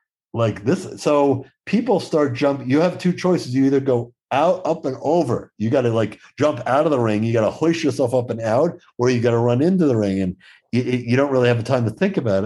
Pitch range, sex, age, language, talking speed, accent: 110-145 Hz, male, 50-69, English, 255 wpm, American